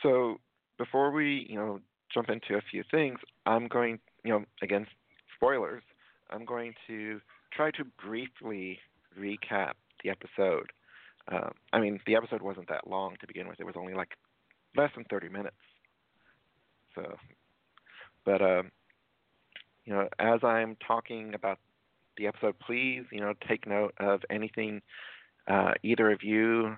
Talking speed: 150 wpm